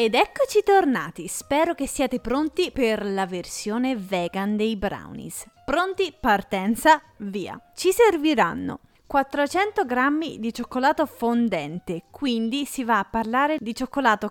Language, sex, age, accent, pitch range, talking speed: Italian, female, 30-49, native, 210-280 Hz, 125 wpm